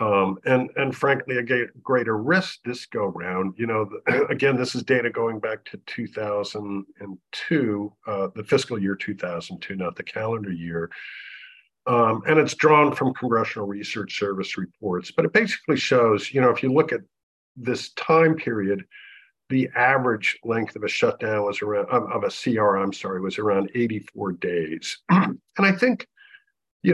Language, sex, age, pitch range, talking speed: English, male, 50-69, 100-135 Hz, 180 wpm